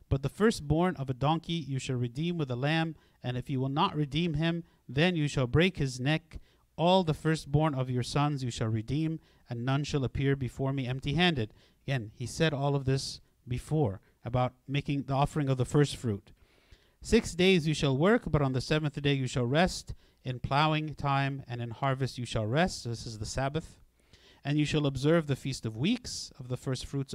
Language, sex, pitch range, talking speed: English, male, 125-155 Hz, 210 wpm